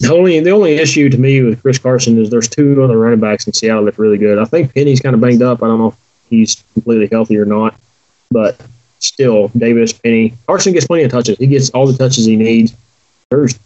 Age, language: 20-39, English